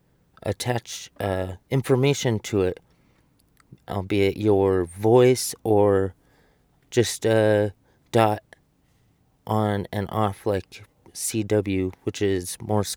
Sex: male